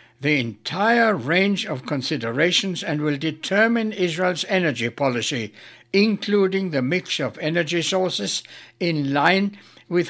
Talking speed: 120 wpm